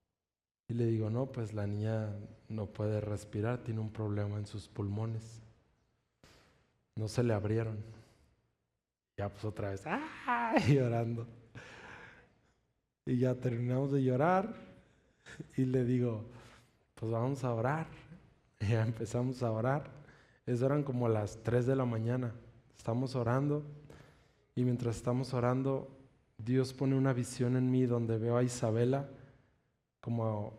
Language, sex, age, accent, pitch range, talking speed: Spanish, male, 20-39, Mexican, 115-135 Hz, 135 wpm